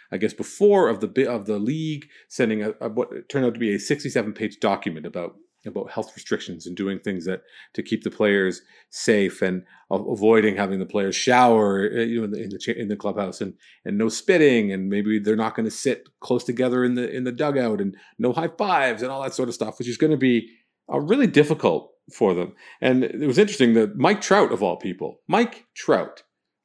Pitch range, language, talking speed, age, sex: 105-135 Hz, English, 225 wpm, 40-59, male